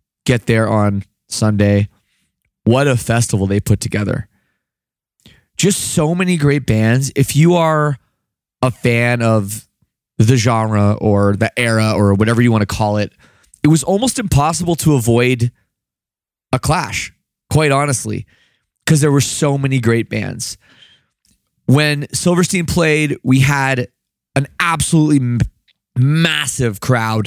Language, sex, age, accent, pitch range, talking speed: English, male, 20-39, American, 110-145 Hz, 130 wpm